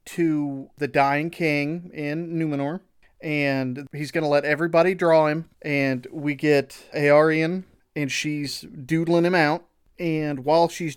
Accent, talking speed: American, 135 wpm